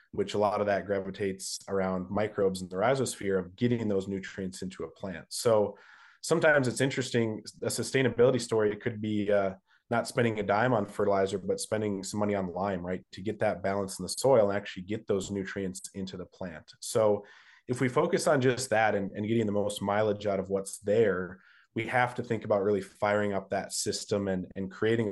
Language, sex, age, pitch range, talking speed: English, male, 20-39, 95-110 Hz, 210 wpm